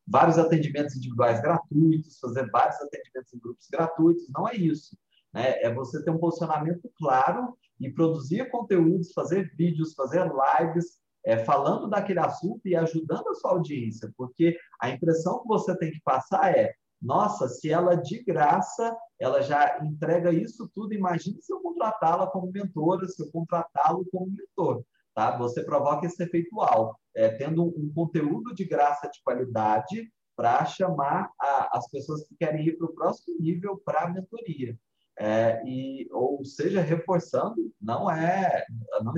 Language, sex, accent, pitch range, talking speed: Portuguese, male, Brazilian, 140-185 Hz, 145 wpm